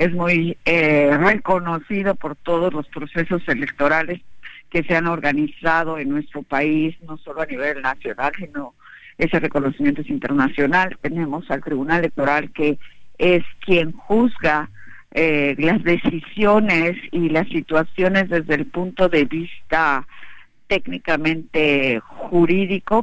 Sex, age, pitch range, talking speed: female, 50-69, 150-185 Hz, 120 wpm